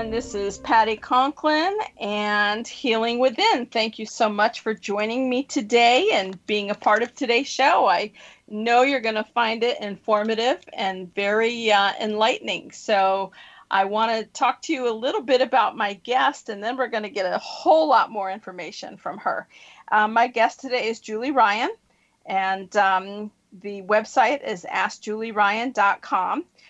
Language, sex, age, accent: English, female, 40-59, American